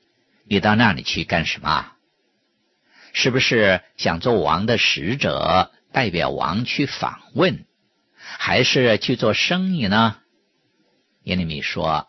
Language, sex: Chinese, male